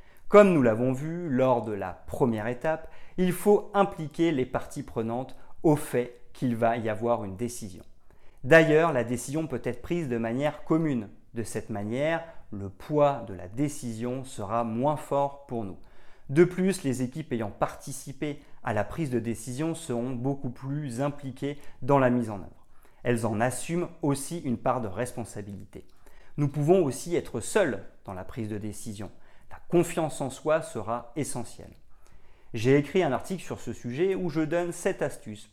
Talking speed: 170 wpm